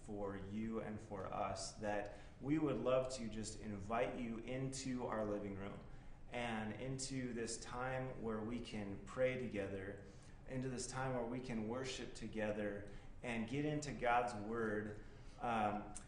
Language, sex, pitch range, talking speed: English, male, 110-140 Hz, 150 wpm